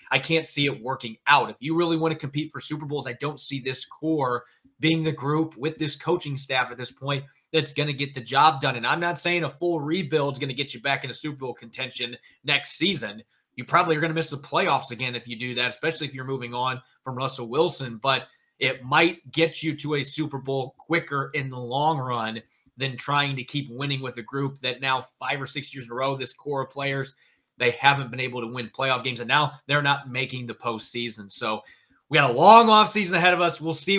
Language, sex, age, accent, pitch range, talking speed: English, male, 30-49, American, 125-160 Hz, 245 wpm